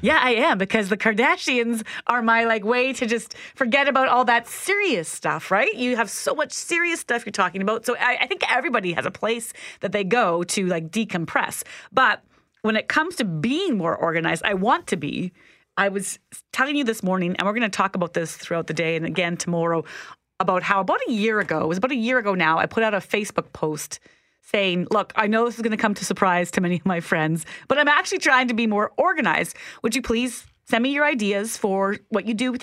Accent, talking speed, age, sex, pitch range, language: American, 235 wpm, 30-49, female, 185-250 Hz, English